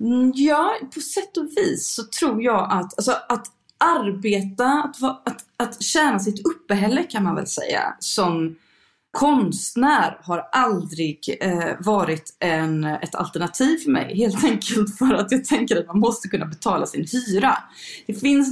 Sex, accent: female, native